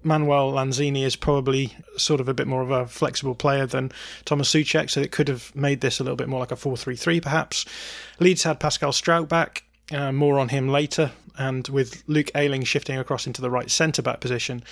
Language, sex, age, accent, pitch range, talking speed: English, male, 20-39, British, 125-145 Hz, 220 wpm